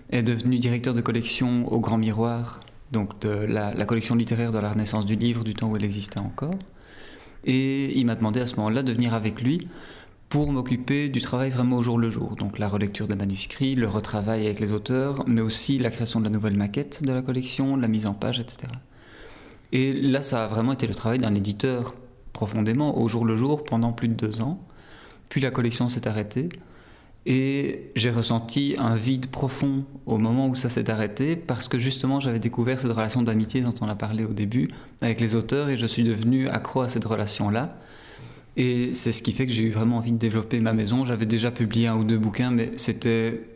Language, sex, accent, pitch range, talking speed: French, male, French, 110-125 Hz, 215 wpm